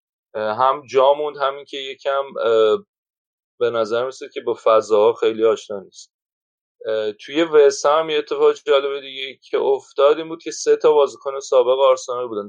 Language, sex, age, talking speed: Persian, male, 30-49, 155 wpm